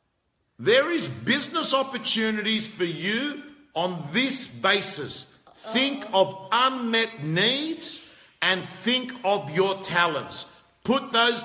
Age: 50-69